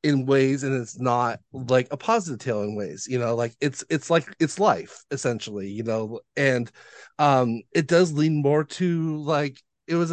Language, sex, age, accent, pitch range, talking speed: English, male, 30-49, American, 120-150 Hz, 190 wpm